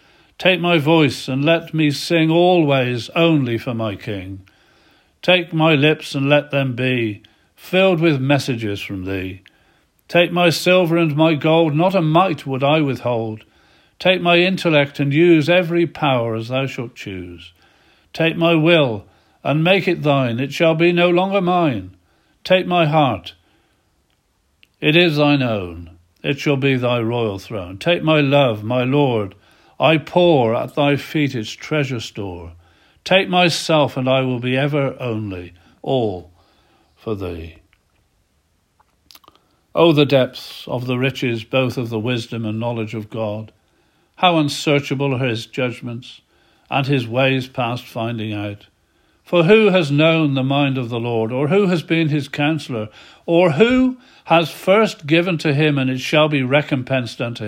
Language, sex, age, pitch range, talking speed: English, male, 50-69, 110-165 Hz, 155 wpm